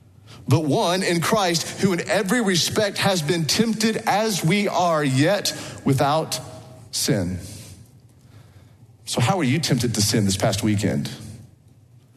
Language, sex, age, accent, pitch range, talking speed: English, male, 40-59, American, 110-140 Hz, 135 wpm